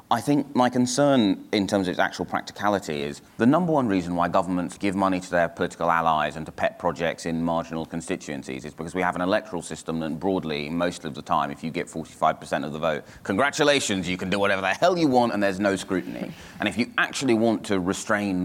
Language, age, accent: English, 30-49, British